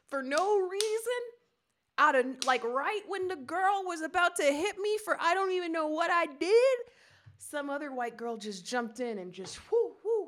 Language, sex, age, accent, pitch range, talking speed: English, female, 20-39, American, 225-305 Hz, 200 wpm